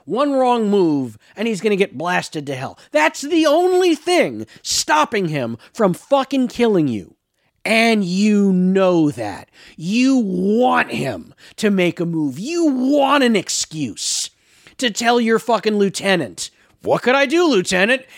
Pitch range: 165-265 Hz